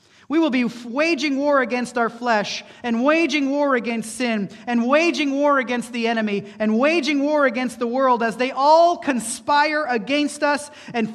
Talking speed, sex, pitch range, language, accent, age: 170 wpm, male, 160-245 Hz, English, American, 30-49